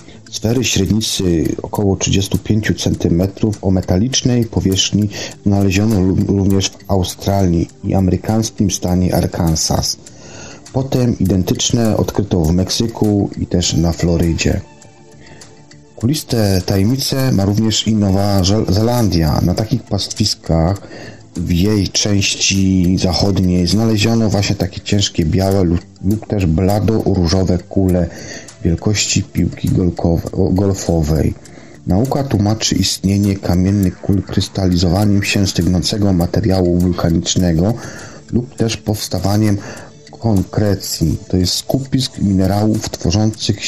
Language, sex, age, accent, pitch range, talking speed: Polish, male, 40-59, native, 90-110 Hz, 100 wpm